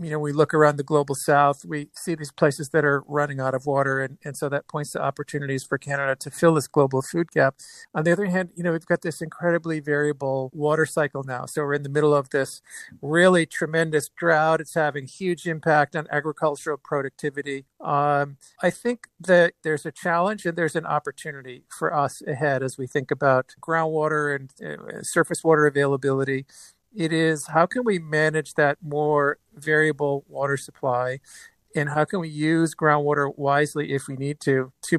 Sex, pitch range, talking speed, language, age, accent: male, 140-165 Hz, 190 wpm, English, 50-69, American